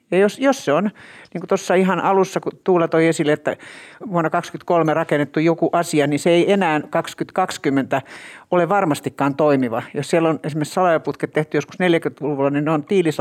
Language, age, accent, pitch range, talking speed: Finnish, 60-79, native, 145-185 Hz, 175 wpm